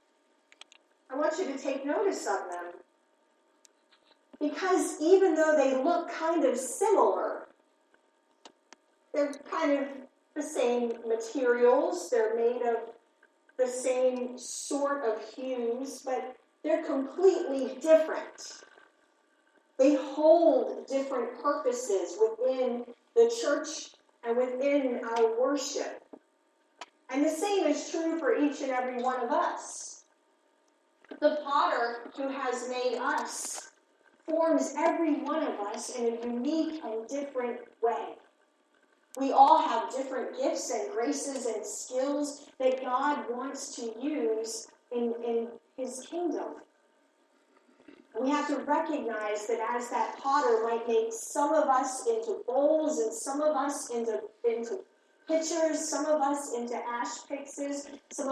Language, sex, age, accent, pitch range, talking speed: English, female, 40-59, American, 250-310 Hz, 125 wpm